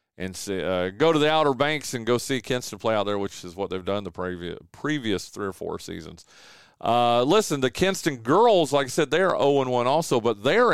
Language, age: English, 40-59